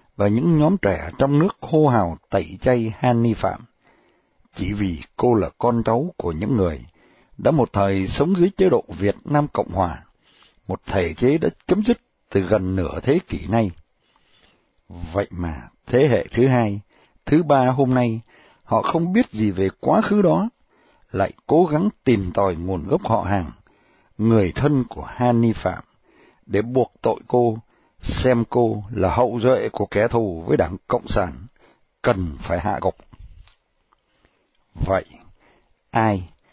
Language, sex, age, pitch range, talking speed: Vietnamese, male, 60-79, 100-140 Hz, 165 wpm